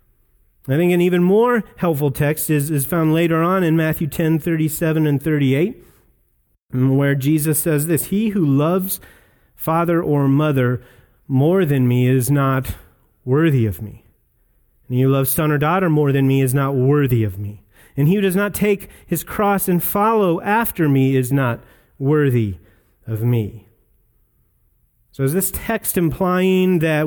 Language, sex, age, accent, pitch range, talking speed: English, male, 30-49, American, 135-180 Hz, 165 wpm